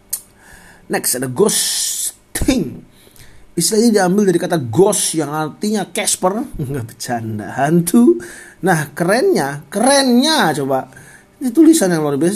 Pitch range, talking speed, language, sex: 130-185 Hz, 115 wpm, English, male